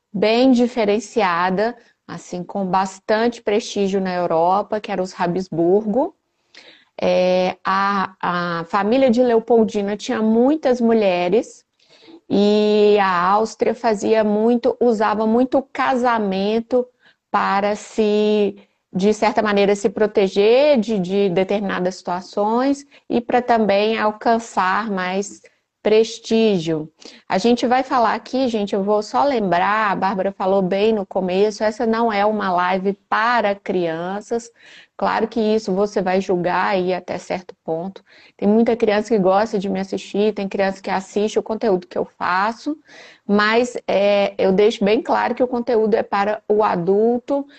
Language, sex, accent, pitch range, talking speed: Portuguese, female, Brazilian, 195-230 Hz, 135 wpm